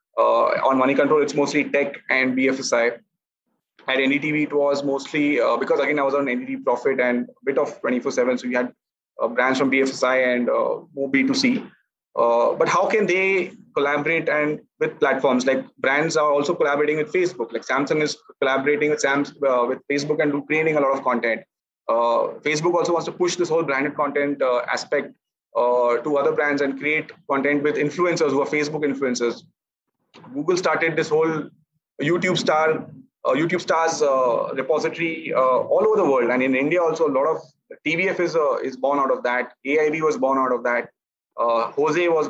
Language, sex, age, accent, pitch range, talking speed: English, male, 30-49, Indian, 140-175 Hz, 190 wpm